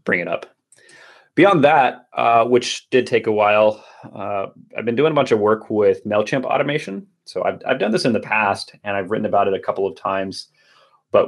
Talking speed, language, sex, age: 215 wpm, English, male, 30-49